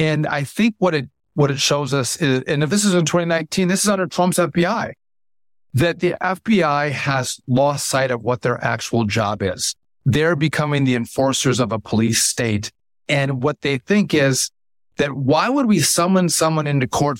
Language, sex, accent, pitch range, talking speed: English, male, American, 125-170 Hz, 190 wpm